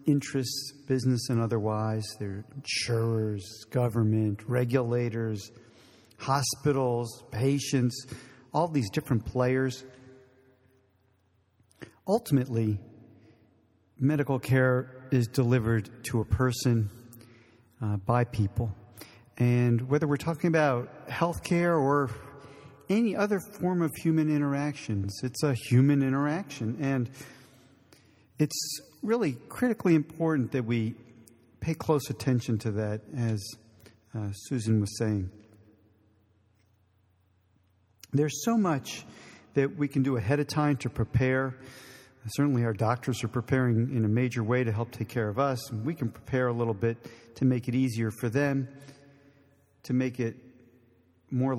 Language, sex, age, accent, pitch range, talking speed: English, male, 40-59, American, 110-140 Hz, 120 wpm